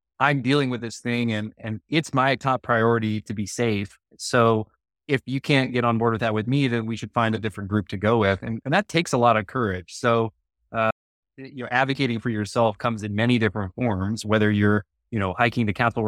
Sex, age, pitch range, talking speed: male, 20-39, 105-120 Hz, 230 wpm